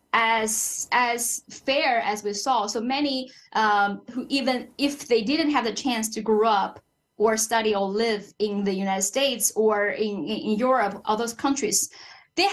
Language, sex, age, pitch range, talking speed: English, female, 10-29, 215-275 Hz, 175 wpm